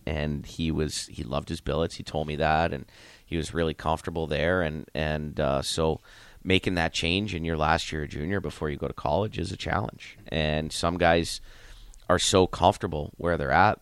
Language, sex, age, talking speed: English, male, 30-49, 205 wpm